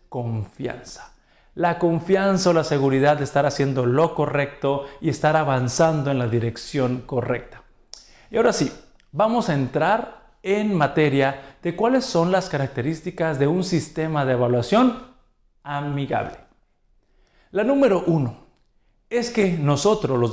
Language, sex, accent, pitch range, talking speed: Spanish, male, Mexican, 135-175 Hz, 130 wpm